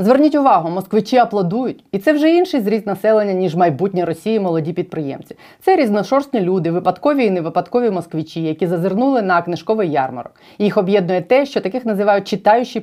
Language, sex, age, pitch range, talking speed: Ukrainian, female, 30-49, 170-230 Hz, 160 wpm